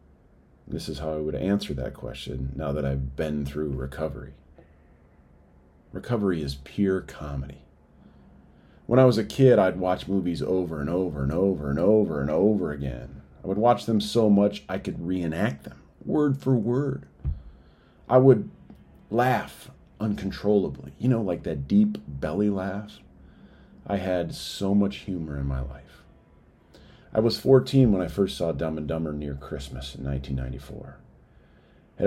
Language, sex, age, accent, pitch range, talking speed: English, male, 40-59, American, 70-105 Hz, 155 wpm